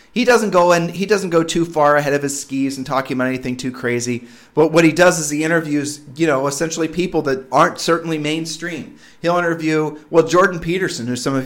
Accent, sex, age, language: American, male, 30-49, English